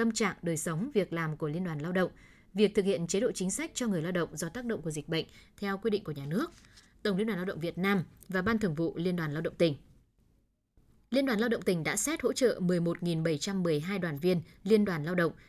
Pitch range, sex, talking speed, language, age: 165-215 Hz, female, 255 wpm, Vietnamese, 20-39